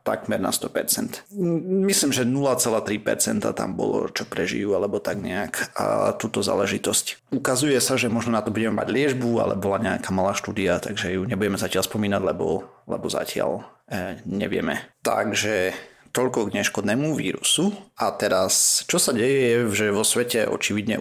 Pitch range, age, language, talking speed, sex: 105-130 Hz, 30-49, Slovak, 155 wpm, male